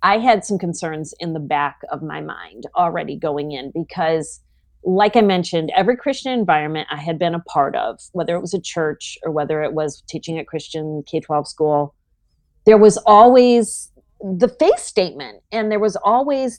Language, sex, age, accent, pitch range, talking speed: English, female, 40-59, American, 160-220 Hz, 180 wpm